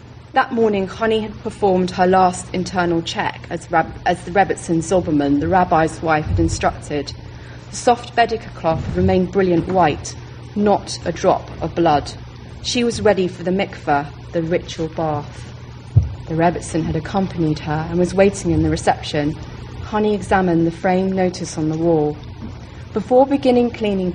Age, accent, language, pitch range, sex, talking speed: 30-49, British, English, 150-195 Hz, female, 155 wpm